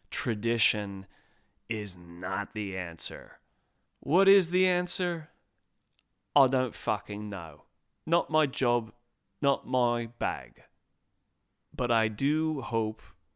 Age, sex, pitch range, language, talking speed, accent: 30-49, male, 100-130 Hz, English, 105 wpm, American